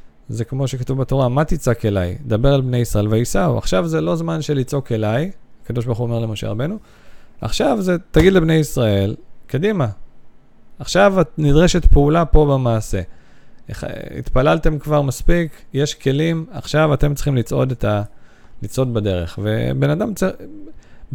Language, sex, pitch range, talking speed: Hebrew, male, 110-145 Hz, 150 wpm